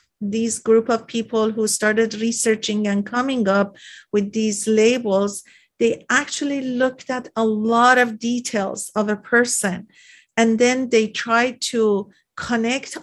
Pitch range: 210-245 Hz